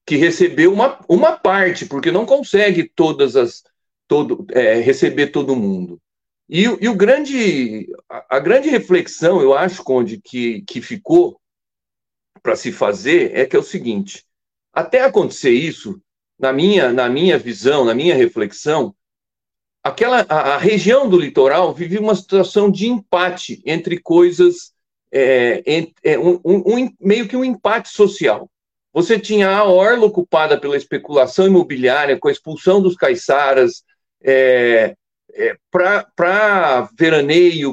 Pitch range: 155-255 Hz